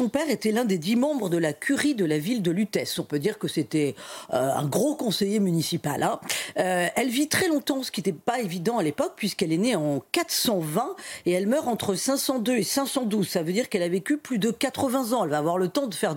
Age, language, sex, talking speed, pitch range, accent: 40-59, French, female, 250 wpm, 175-265 Hz, French